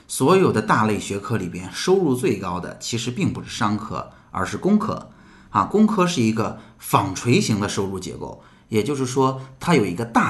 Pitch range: 95-125 Hz